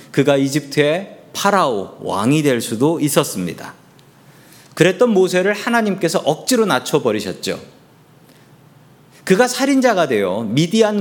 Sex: male